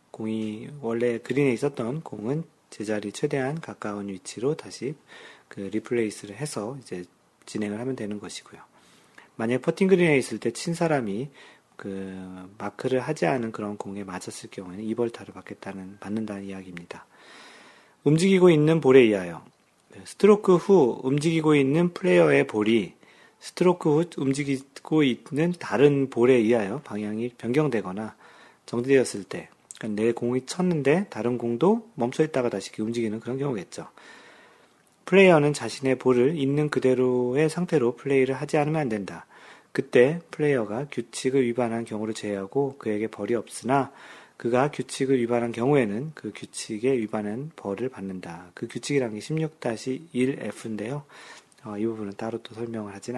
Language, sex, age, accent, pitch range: Korean, male, 40-59, native, 110-145 Hz